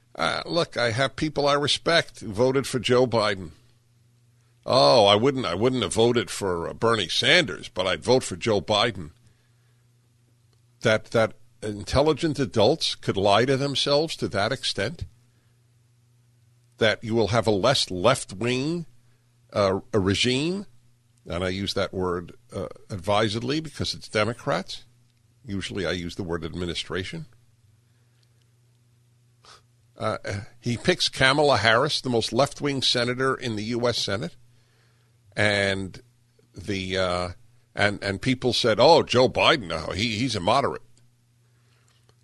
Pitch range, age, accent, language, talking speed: 105-120 Hz, 50-69, American, English, 135 wpm